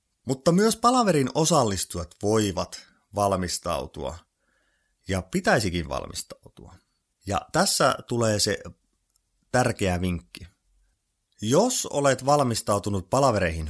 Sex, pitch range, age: male, 95-140 Hz, 30-49